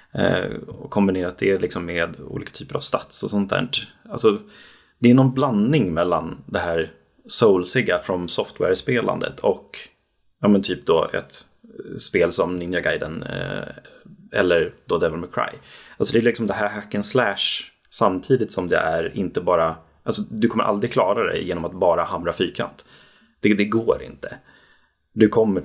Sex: male